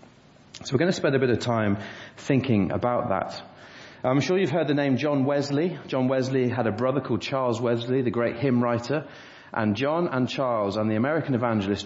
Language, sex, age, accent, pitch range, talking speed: English, male, 30-49, British, 110-140 Hz, 200 wpm